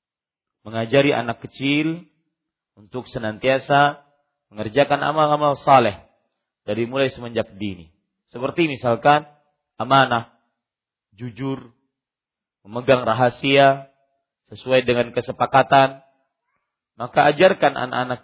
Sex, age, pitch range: male, 40-59, 115-145 Hz